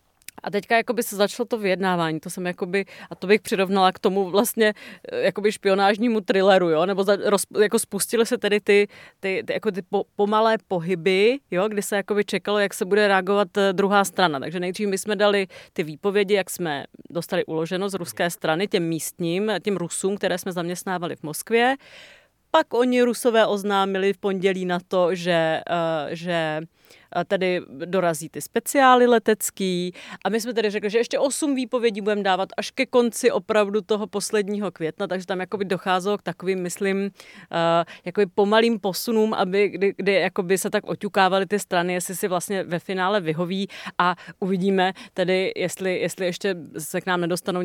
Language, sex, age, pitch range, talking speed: Czech, female, 30-49, 180-210 Hz, 165 wpm